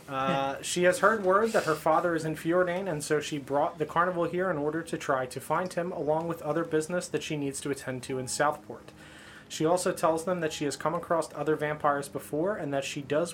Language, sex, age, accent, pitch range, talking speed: English, male, 30-49, American, 145-170 Hz, 240 wpm